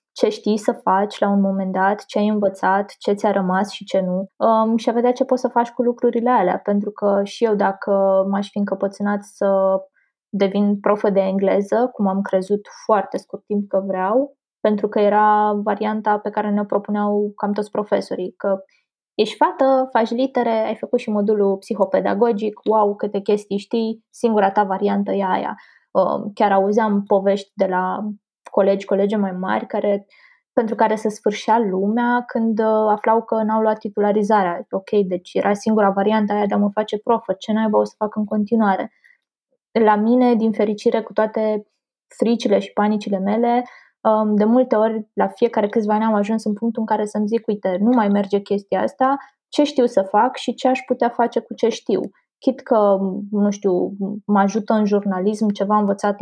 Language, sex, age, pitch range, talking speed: Romanian, female, 20-39, 200-230 Hz, 180 wpm